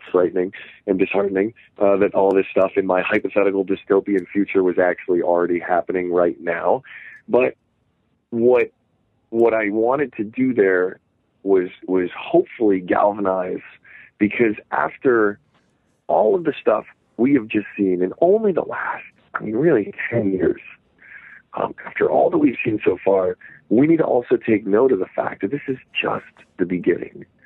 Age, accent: 40-59, American